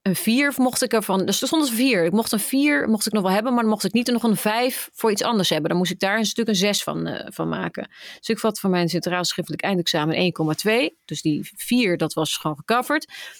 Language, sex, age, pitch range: Dutch, female, 30-49, 175-230 Hz